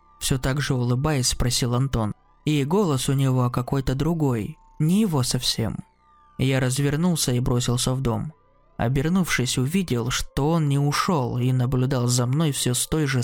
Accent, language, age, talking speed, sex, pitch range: native, Russian, 20-39, 160 wpm, male, 130-170 Hz